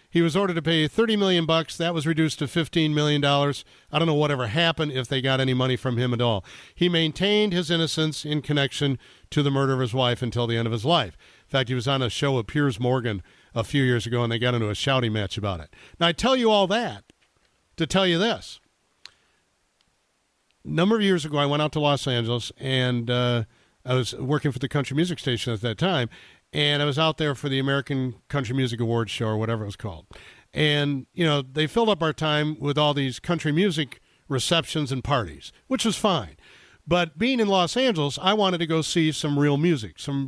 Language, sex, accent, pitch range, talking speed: English, male, American, 125-160 Hz, 225 wpm